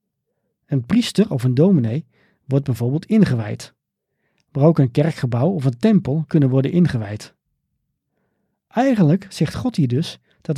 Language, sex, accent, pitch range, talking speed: Dutch, male, Dutch, 125-165 Hz, 135 wpm